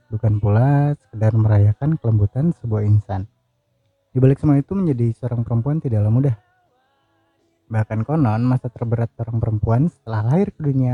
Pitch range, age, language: 110-140 Hz, 30-49, Indonesian